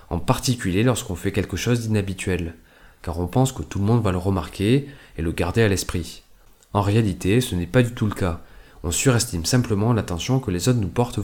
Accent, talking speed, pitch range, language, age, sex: French, 215 wpm, 90-120 Hz, French, 20-39, male